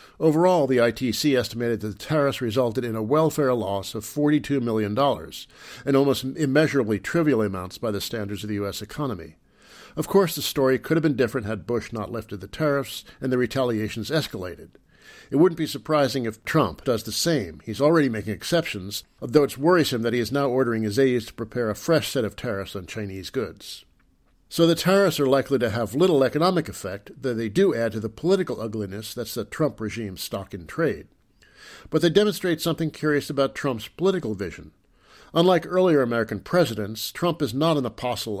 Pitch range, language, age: 105-145 Hz, English, 50-69